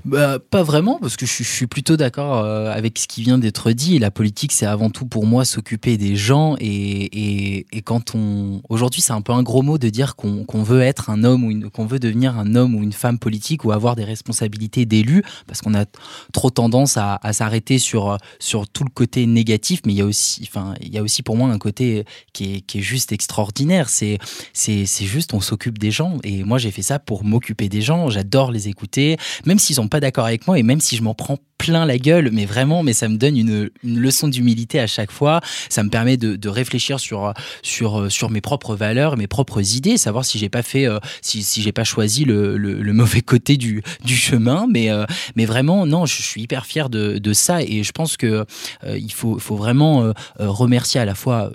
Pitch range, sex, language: 105-130 Hz, male, French